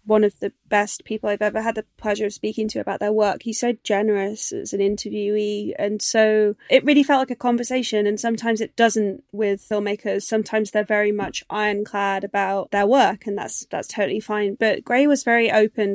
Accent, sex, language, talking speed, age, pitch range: British, female, English, 205 wpm, 30-49, 205-225 Hz